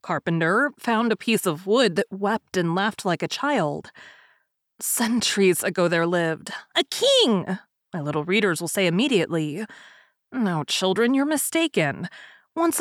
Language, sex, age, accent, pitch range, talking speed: English, female, 20-39, American, 180-260 Hz, 140 wpm